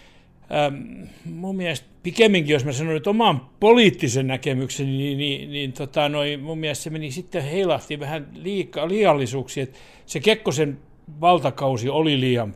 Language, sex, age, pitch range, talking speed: Finnish, male, 60-79, 125-155 Hz, 145 wpm